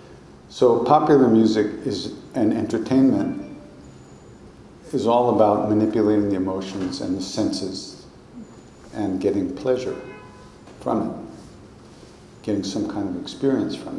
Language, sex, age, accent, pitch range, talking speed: English, male, 60-79, American, 100-120 Hz, 105 wpm